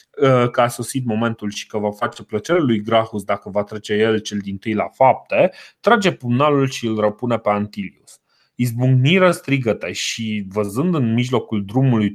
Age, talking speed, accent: 30-49, 170 wpm, native